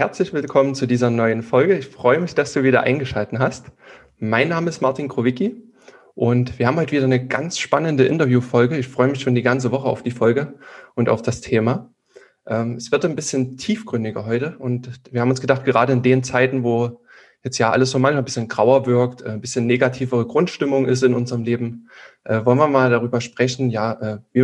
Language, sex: German, male